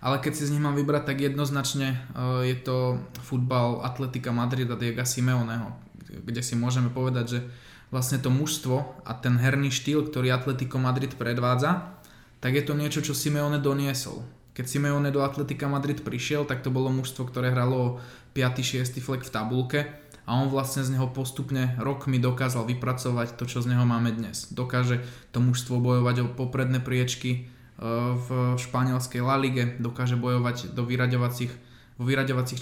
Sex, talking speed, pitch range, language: male, 165 wpm, 125-135 Hz, Slovak